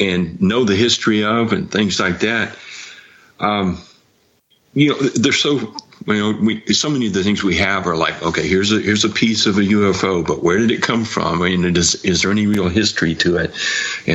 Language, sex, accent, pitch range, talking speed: English, male, American, 90-110 Hz, 225 wpm